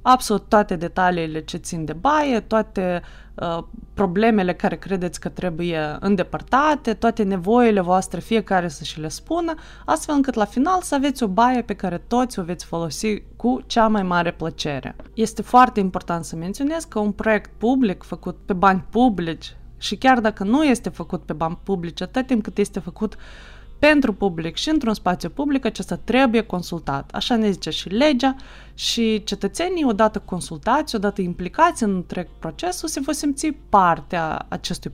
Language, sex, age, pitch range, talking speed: Romanian, female, 20-39, 175-250 Hz, 165 wpm